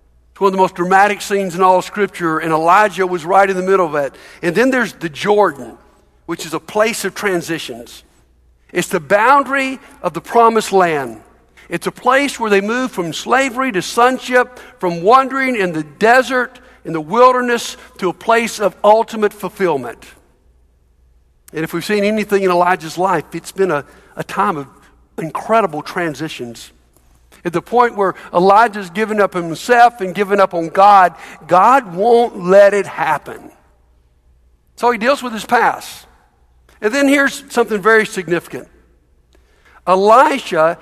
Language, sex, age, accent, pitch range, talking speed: English, male, 60-79, American, 165-230 Hz, 155 wpm